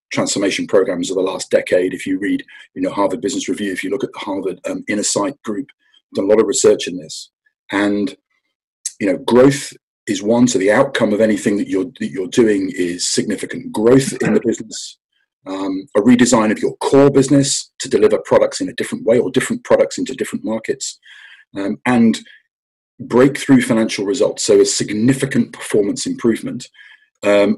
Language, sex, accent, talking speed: English, male, British, 185 wpm